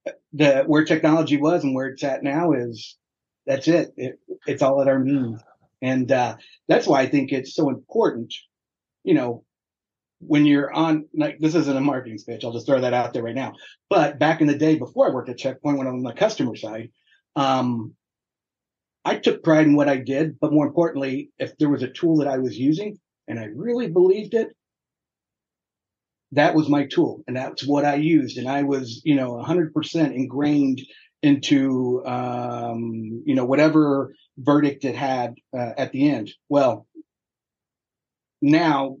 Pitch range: 130-155 Hz